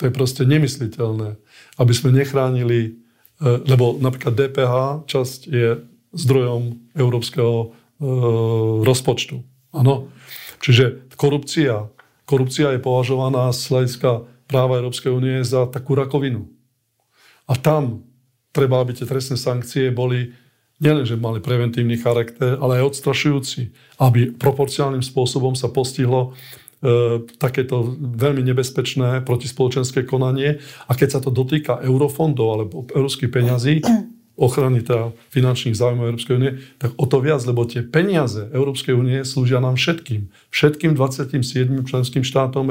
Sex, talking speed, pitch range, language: male, 120 wpm, 120-140 Hz, Slovak